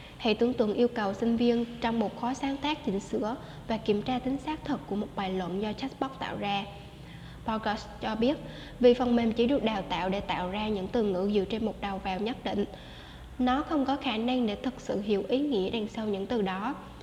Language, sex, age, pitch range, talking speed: Vietnamese, female, 10-29, 205-250 Hz, 240 wpm